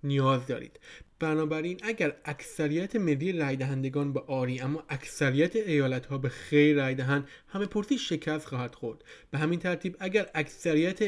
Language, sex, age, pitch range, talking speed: Persian, male, 20-39, 135-170 Hz, 150 wpm